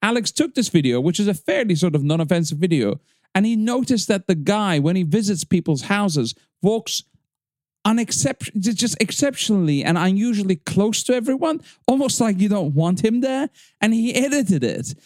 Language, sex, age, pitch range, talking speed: English, male, 40-59, 155-215 Hz, 170 wpm